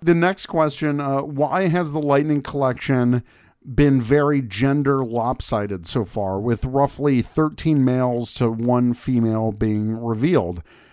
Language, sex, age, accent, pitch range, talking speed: English, male, 50-69, American, 120-150 Hz, 130 wpm